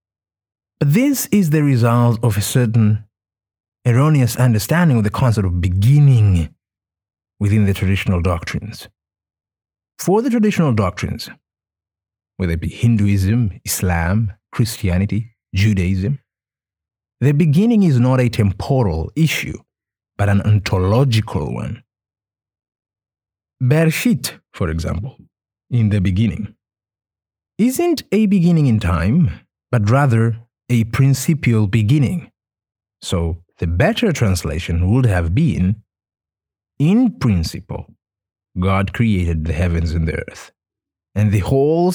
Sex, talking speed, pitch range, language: male, 110 wpm, 95-125 Hz, English